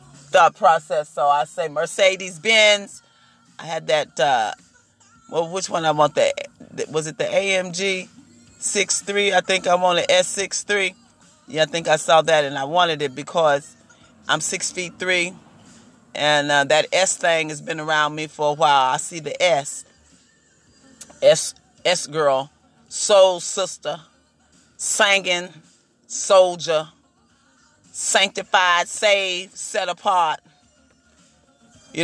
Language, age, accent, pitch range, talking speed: English, 40-59, American, 155-195 Hz, 135 wpm